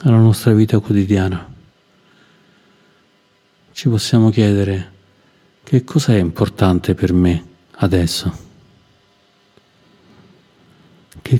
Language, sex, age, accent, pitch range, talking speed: Italian, male, 50-69, native, 95-115 Hz, 75 wpm